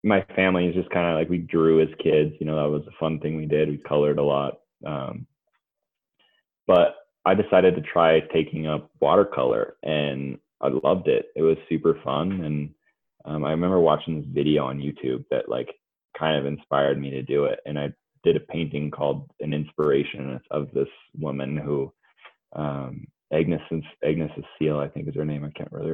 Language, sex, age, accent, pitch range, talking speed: English, male, 20-39, American, 75-85 Hz, 190 wpm